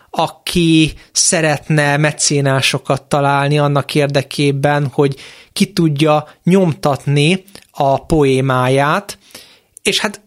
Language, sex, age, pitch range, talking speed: Hungarian, male, 30-49, 140-175 Hz, 80 wpm